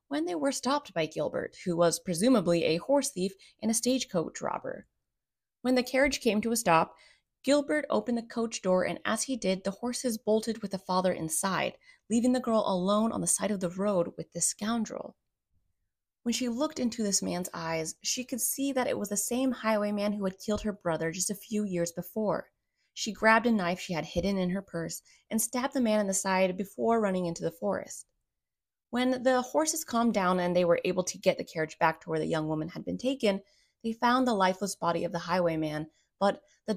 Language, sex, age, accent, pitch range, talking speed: English, female, 20-39, American, 175-235 Hz, 215 wpm